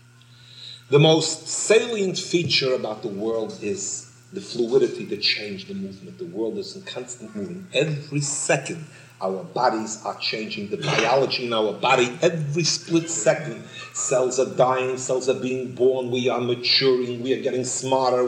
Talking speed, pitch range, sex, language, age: 160 wpm, 120-165 Hz, male, English, 40-59